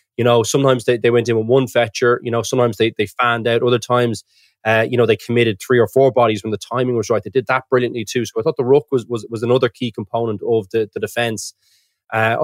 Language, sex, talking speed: English, male, 260 wpm